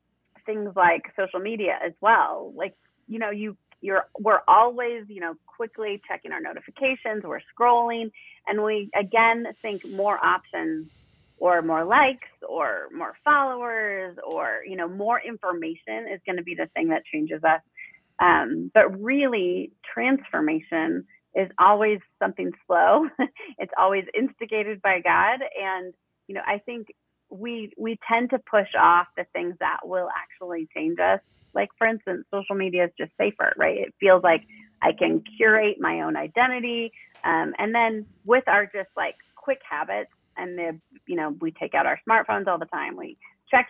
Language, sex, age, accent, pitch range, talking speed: English, female, 30-49, American, 185-250 Hz, 165 wpm